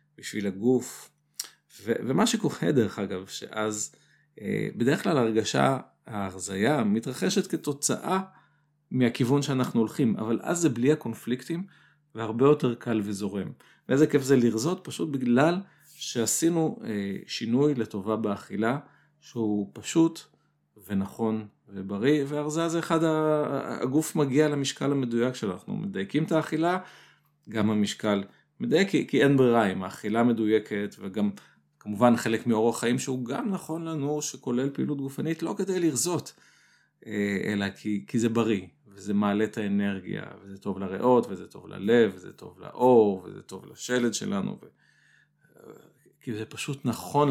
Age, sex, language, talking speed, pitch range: 50-69, male, Hebrew, 130 wpm, 105-150 Hz